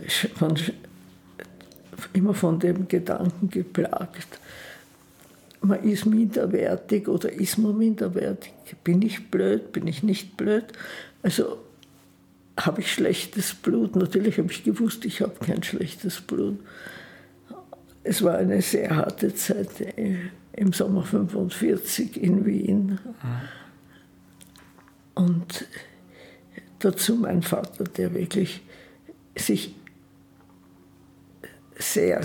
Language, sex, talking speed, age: German, female, 95 wpm, 60-79